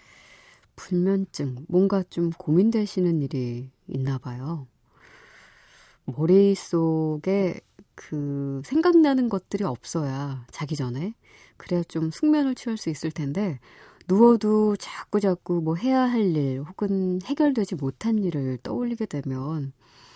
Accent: native